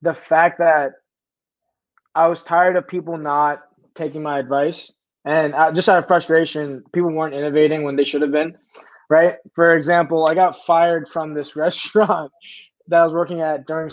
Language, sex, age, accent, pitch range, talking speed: English, male, 20-39, American, 145-170 Hz, 170 wpm